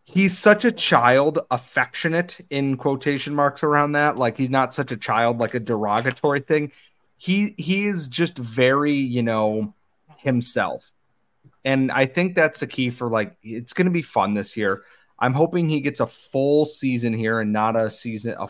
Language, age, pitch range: English, 30-49, 115-145 Hz